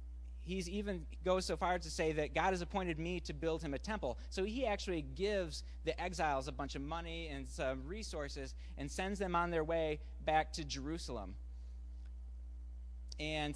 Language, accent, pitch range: English, American, 135-175 Hz